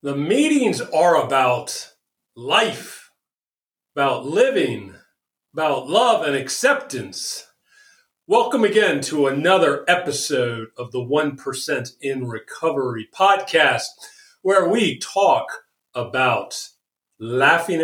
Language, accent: English, American